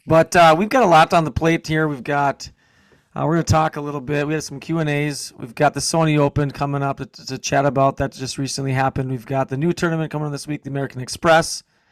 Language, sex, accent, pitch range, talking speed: English, male, American, 130-145 Hz, 255 wpm